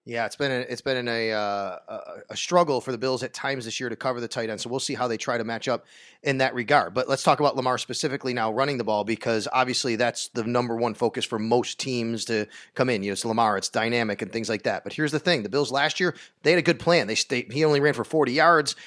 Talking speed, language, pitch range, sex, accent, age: 270 wpm, English, 125-170 Hz, male, American, 30-49